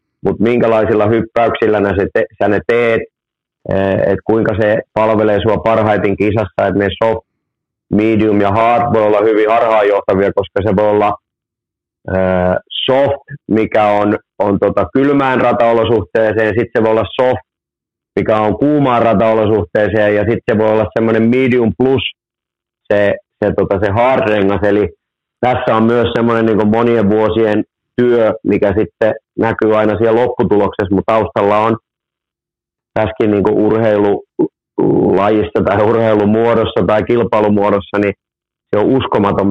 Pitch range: 100-115 Hz